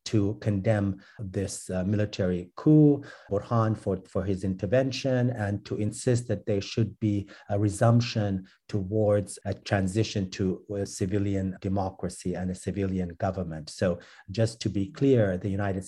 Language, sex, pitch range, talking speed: English, male, 95-110 Hz, 145 wpm